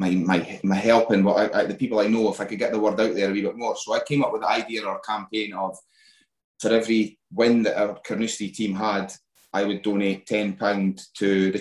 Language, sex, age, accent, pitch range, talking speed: English, male, 20-39, British, 95-110 Hz, 250 wpm